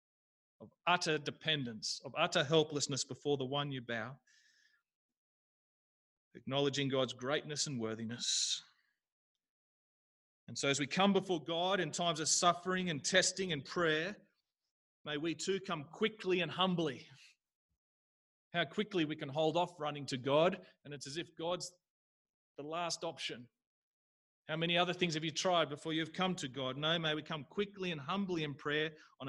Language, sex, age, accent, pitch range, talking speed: English, male, 30-49, Australian, 140-175 Hz, 160 wpm